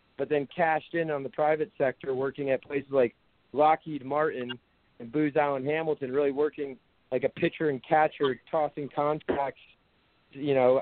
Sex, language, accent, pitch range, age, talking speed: male, English, American, 130-155 Hz, 50-69, 160 wpm